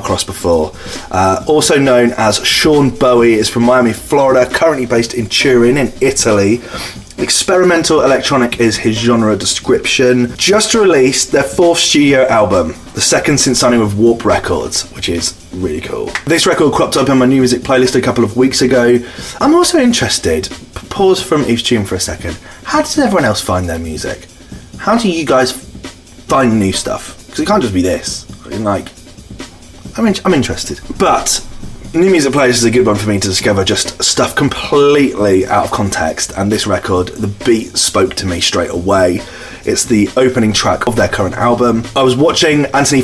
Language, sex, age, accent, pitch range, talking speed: English, male, 20-39, British, 105-135 Hz, 180 wpm